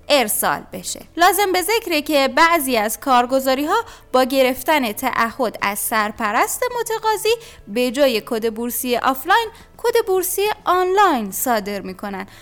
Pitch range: 240-375 Hz